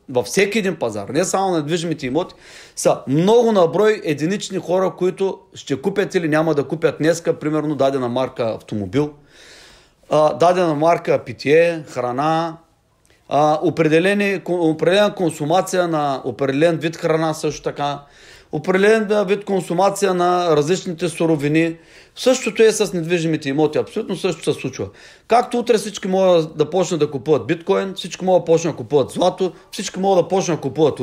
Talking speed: 150 wpm